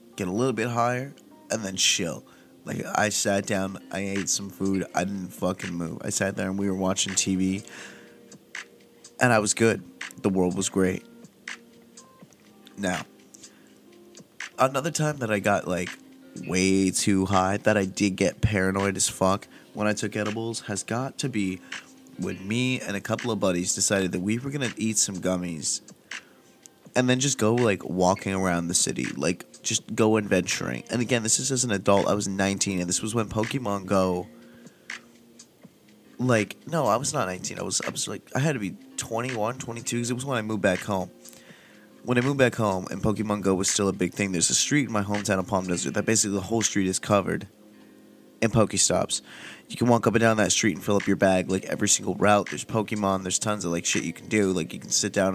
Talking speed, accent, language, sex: 210 wpm, American, English, male